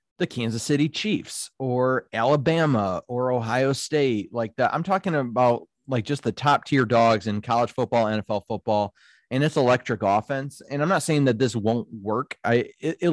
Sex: male